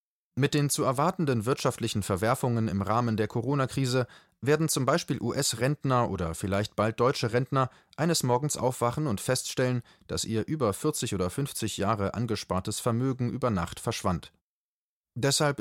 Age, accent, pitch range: 30-49, German, 105-130 Hz